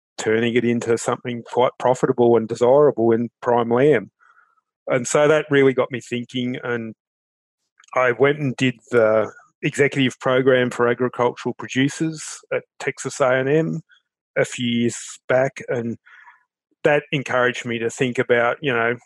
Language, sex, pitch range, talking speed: English, male, 120-145 Hz, 140 wpm